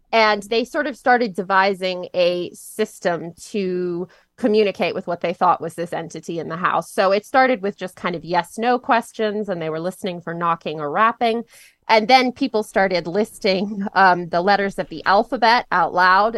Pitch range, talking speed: 175-225 Hz, 185 wpm